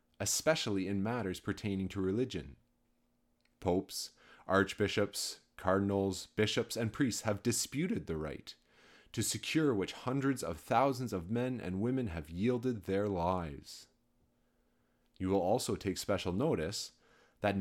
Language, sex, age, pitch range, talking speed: English, male, 30-49, 95-125 Hz, 125 wpm